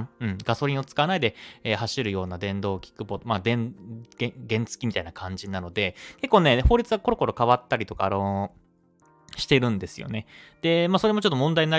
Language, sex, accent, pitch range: Japanese, male, native, 100-155 Hz